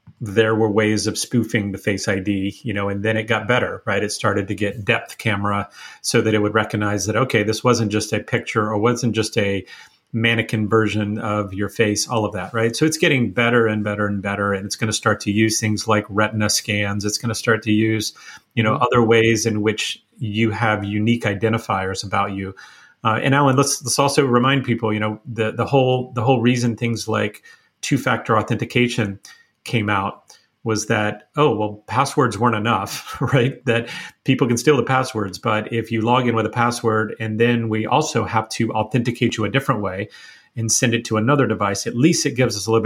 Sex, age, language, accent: male, 30-49, English, American